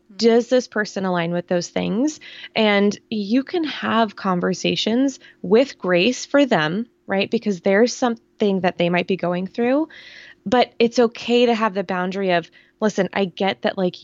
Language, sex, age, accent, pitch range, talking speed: English, female, 20-39, American, 180-235 Hz, 165 wpm